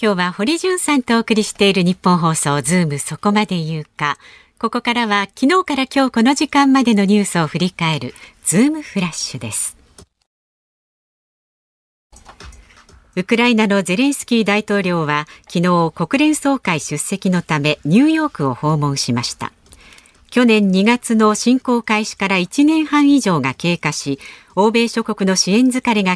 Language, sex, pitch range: Japanese, female, 160-245 Hz